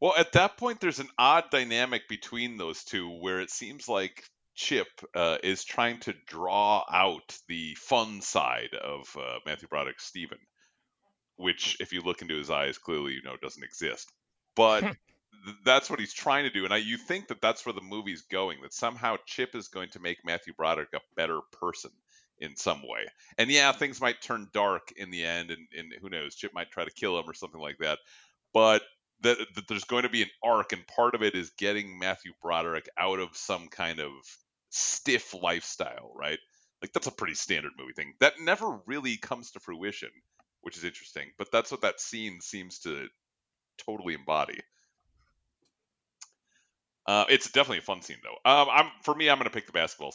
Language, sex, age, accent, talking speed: English, male, 40-59, American, 195 wpm